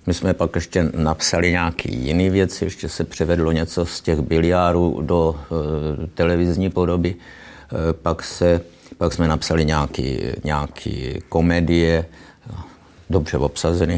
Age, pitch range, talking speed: 50-69, 75-85 Hz, 130 wpm